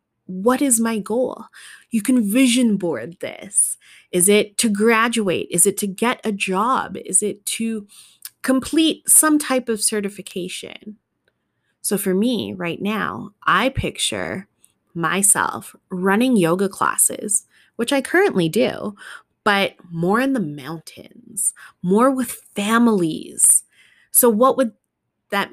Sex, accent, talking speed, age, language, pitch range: female, American, 125 wpm, 20-39, English, 185-240 Hz